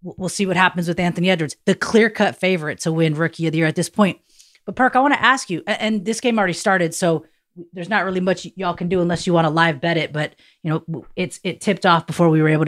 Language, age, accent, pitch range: English, 30-49, American, 160-195 Hz